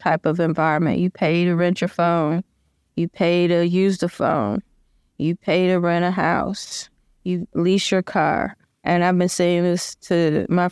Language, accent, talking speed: English, American, 180 wpm